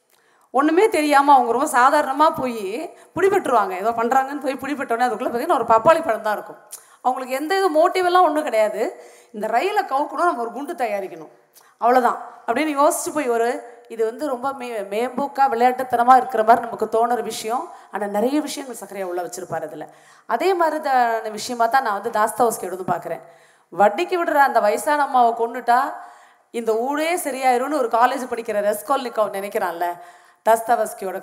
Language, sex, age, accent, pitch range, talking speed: Tamil, female, 30-49, native, 200-270 Hz, 150 wpm